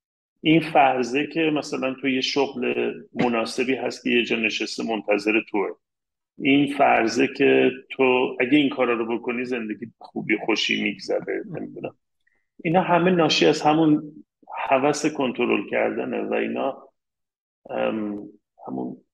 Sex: male